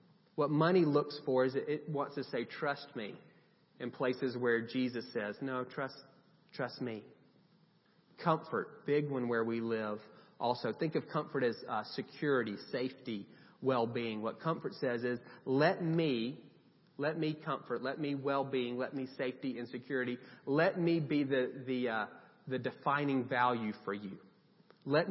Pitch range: 120-155 Hz